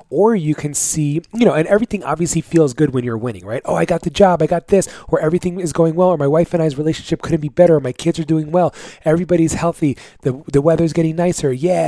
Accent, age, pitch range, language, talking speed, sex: American, 30-49, 125-165 Hz, English, 260 wpm, male